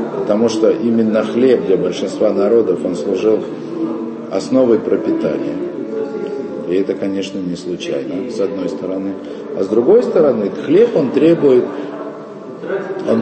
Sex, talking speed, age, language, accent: male, 125 wpm, 50-69, Russian, native